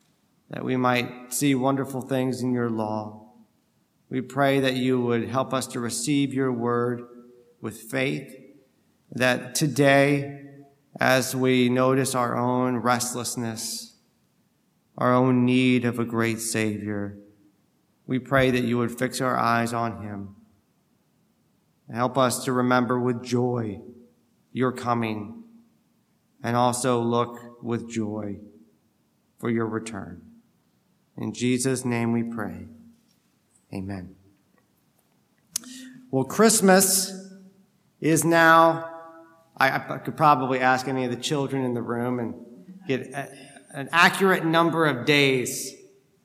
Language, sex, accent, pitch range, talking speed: English, male, American, 120-160 Hz, 120 wpm